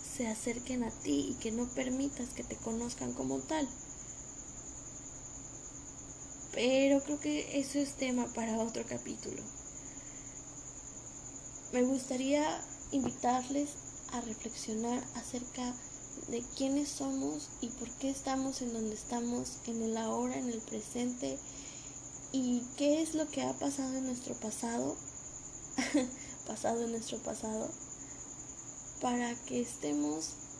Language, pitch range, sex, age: Spanish, 200-265 Hz, female, 20-39